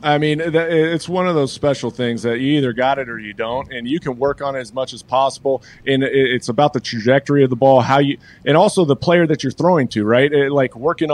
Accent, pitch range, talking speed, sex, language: American, 125-150 Hz, 255 wpm, male, English